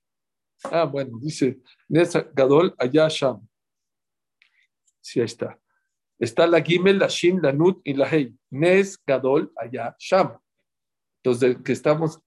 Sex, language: male, Spanish